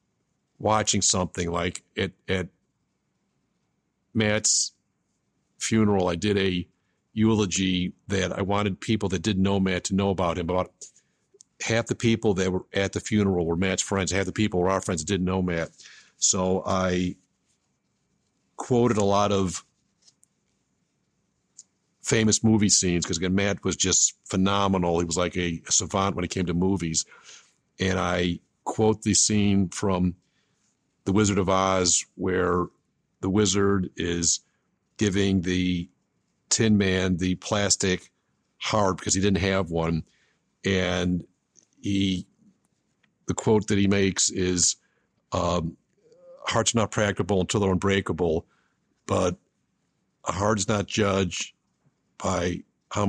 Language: English